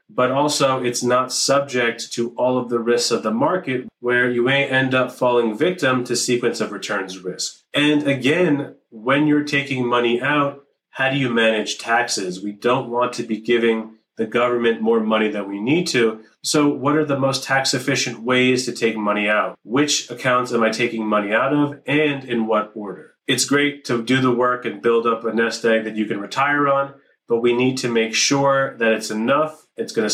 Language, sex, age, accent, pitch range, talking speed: English, male, 30-49, American, 115-140 Hz, 205 wpm